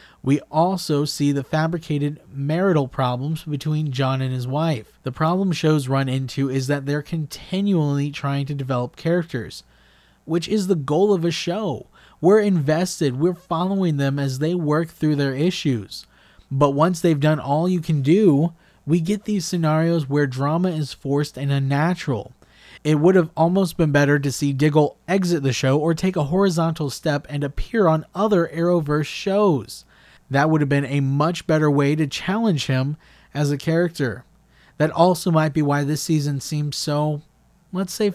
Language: English